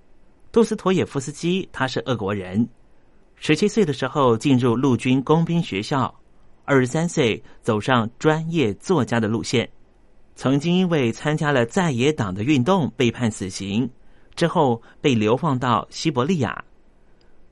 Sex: male